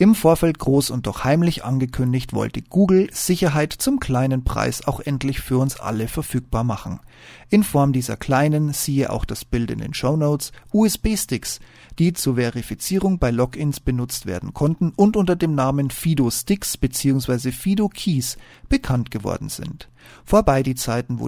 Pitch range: 125-165 Hz